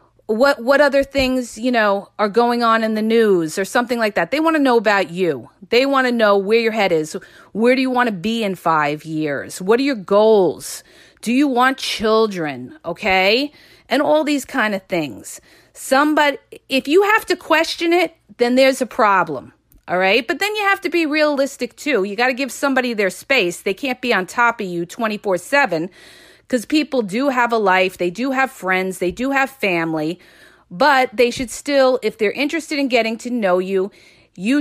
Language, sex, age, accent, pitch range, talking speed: English, female, 40-59, American, 195-270 Hz, 205 wpm